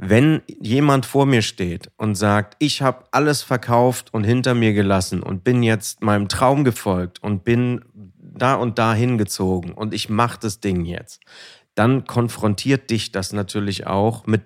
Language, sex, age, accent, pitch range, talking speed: German, male, 40-59, German, 100-125 Hz, 165 wpm